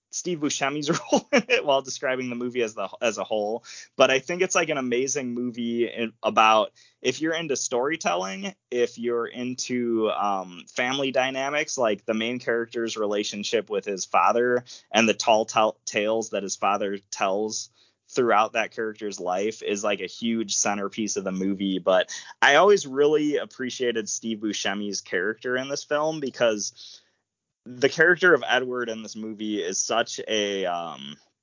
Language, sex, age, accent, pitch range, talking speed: English, male, 20-39, American, 110-130 Hz, 160 wpm